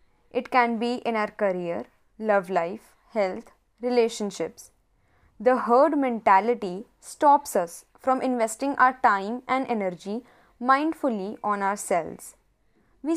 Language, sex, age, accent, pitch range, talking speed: English, female, 20-39, Indian, 215-285 Hz, 115 wpm